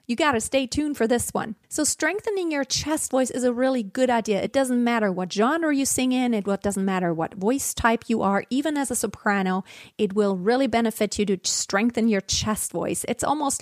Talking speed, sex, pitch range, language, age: 220 wpm, female, 210-260 Hz, English, 30-49